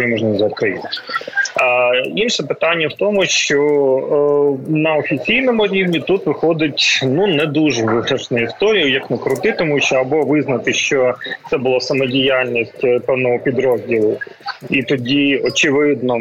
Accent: native